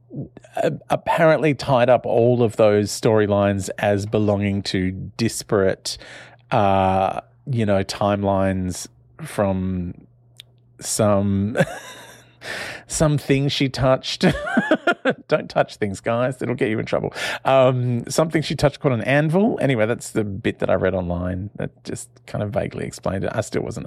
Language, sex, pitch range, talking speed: English, male, 100-125 Hz, 135 wpm